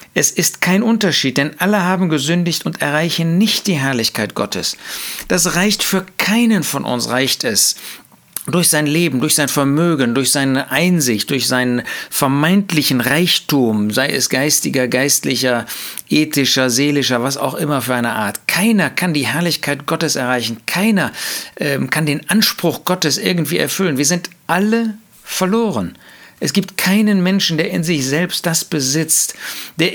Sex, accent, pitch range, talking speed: male, German, 140-185 Hz, 150 wpm